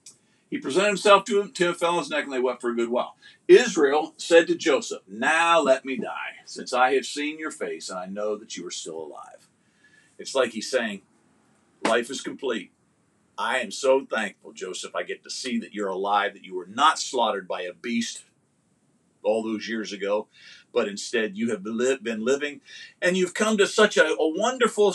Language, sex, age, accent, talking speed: English, male, 50-69, American, 200 wpm